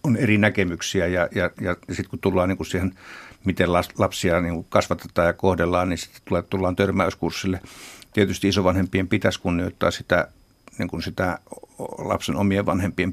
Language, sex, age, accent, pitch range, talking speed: Finnish, male, 60-79, native, 90-105 Hz, 150 wpm